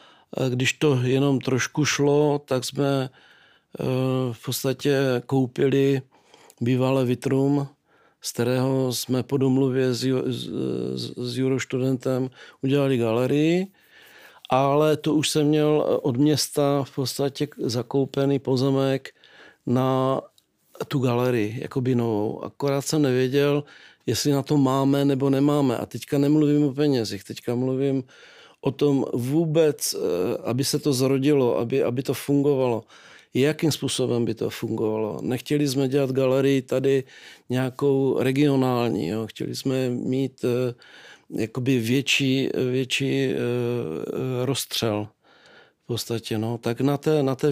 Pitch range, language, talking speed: 125-140 Hz, Czech, 120 wpm